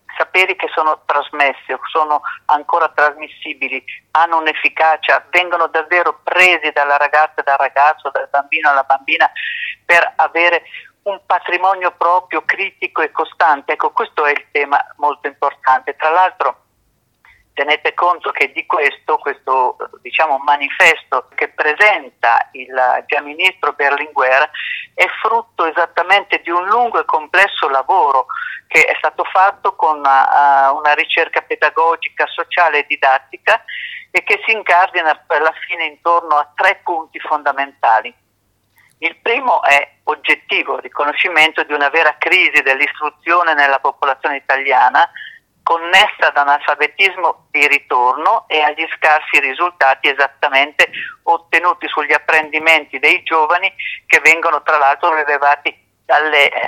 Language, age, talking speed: Italian, 40-59, 125 wpm